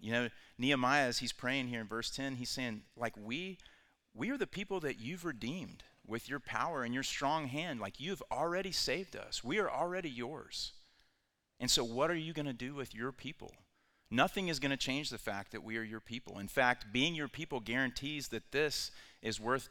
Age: 40-59